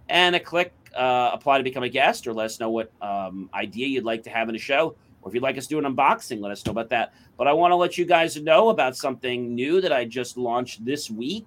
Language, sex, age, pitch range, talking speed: English, male, 40-59, 115-150 Hz, 285 wpm